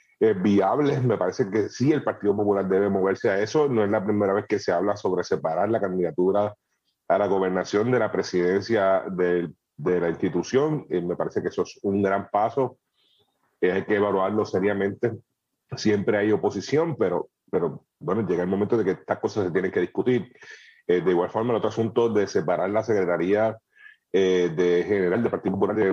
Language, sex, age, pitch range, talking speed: Spanish, male, 30-49, 95-125 Hz, 185 wpm